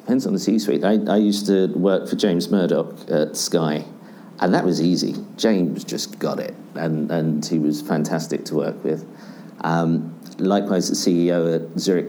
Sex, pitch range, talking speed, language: male, 85-100 Hz, 180 wpm, English